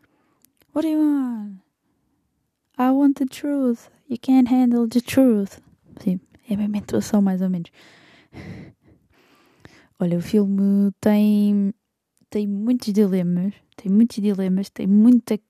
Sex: female